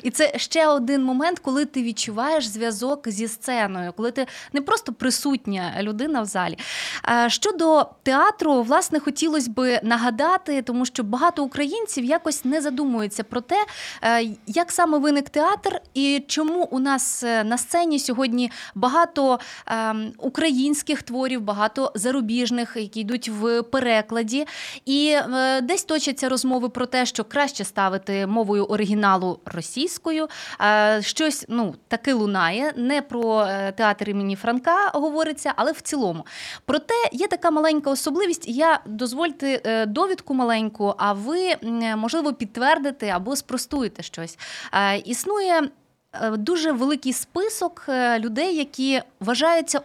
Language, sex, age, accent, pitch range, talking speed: Ukrainian, female, 20-39, native, 230-300 Hz, 125 wpm